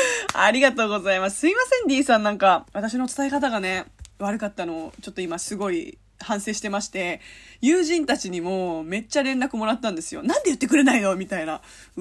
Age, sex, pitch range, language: 20-39, female, 185-280 Hz, Japanese